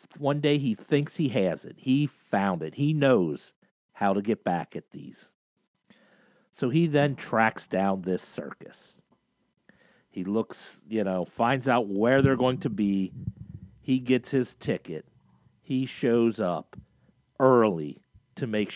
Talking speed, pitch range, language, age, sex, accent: 145 wpm, 95-140 Hz, English, 50-69, male, American